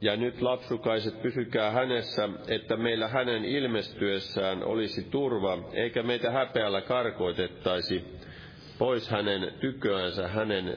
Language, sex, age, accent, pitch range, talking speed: Finnish, male, 40-59, native, 95-115 Hz, 105 wpm